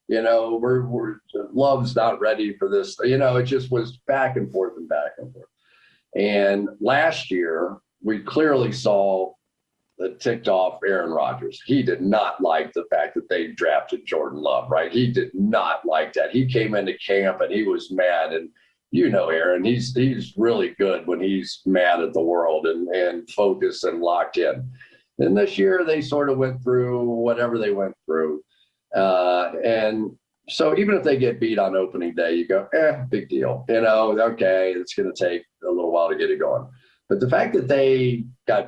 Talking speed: 190 wpm